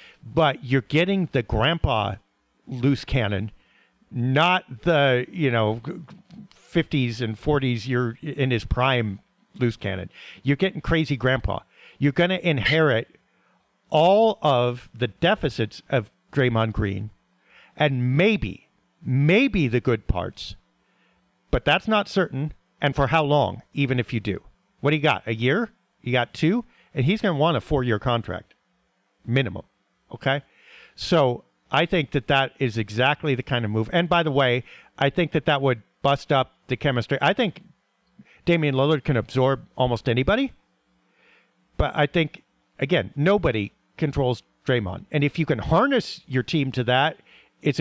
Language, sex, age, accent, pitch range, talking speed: English, male, 50-69, American, 120-160 Hz, 155 wpm